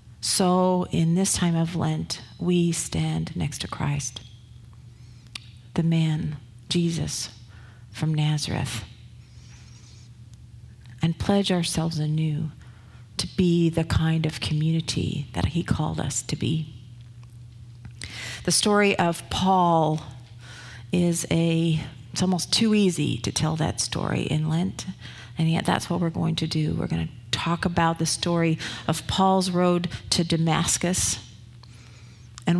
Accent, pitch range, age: American, 120-175 Hz, 40-59